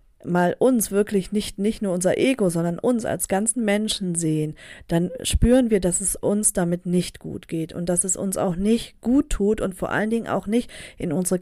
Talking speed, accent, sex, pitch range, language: 210 wpm, German, female, 180-220 Hz, German